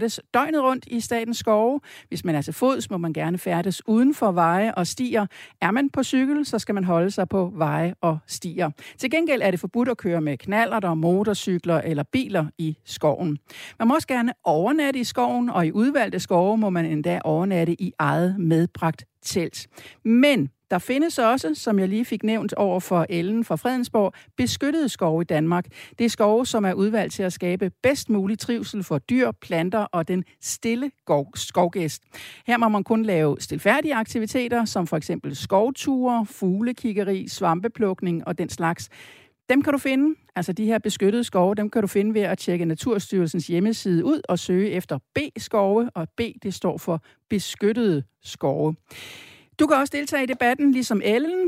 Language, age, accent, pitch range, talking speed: Danish, 60-79, native, 170-235 Hz, 185 wpm